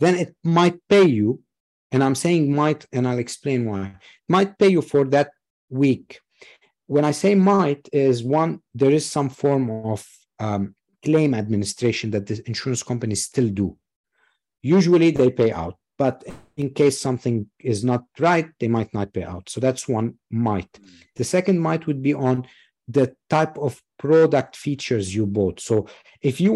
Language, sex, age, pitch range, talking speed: English, male, 50-69, 120-155 Hz, 170 wpm